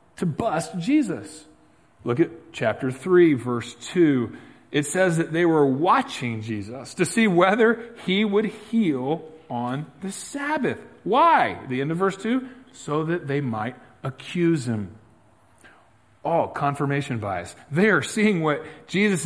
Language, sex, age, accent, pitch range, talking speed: English, male, 40-59, American, 125-170 Hz, 140 wpm